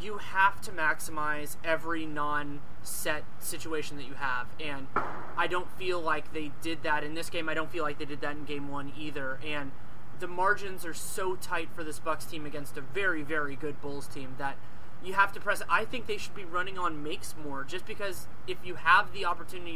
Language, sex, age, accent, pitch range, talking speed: English, male, 20-39, American, 145-175 Hz, 215 wpm